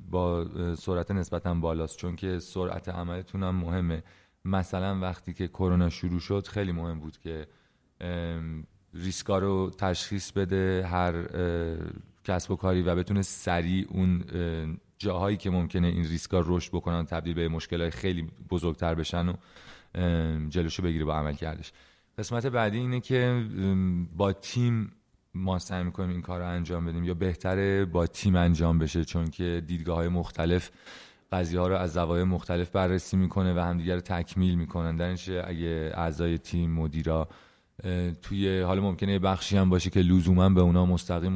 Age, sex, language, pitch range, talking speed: 30-49, male, Persian, 85-95 Hz, 150 wpm